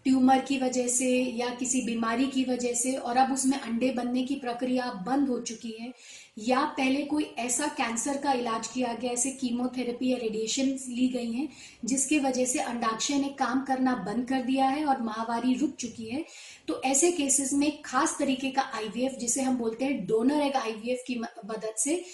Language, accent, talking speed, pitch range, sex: Hindi, native, 190 wpm, 240-275 Hz, female